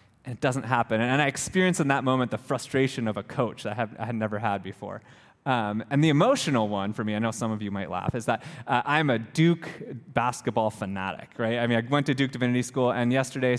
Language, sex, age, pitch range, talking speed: English, male, 20-39, 125-210 Hz, 235 wpm